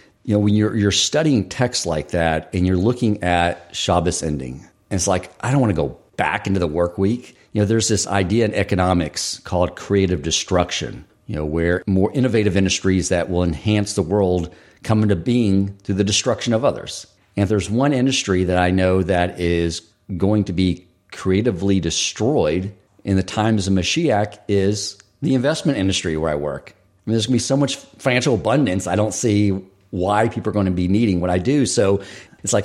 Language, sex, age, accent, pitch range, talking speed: English, male, 50-69, American, 90-110 Hz, 200 wpm